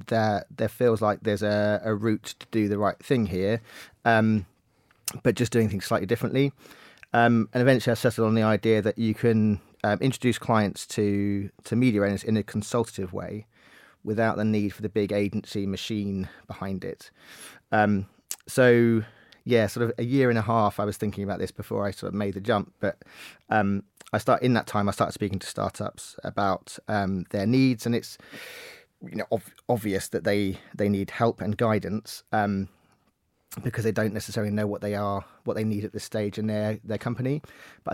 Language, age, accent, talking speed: English, 30-49, British, 195 wpm